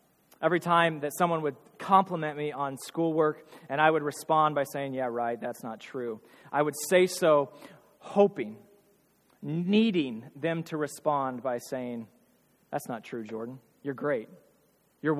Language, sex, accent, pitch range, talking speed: English, male, American, 140-165 Hz, 150 wpm